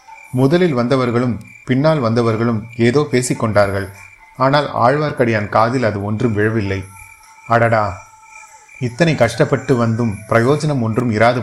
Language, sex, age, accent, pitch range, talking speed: Tamil, male, 30-49, native, 110-140 Hz, 100 wpm